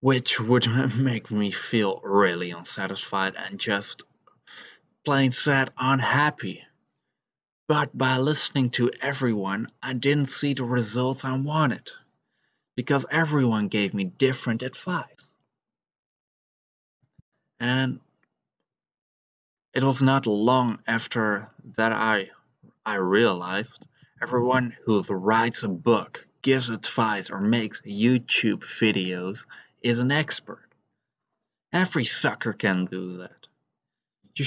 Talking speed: 105 wpm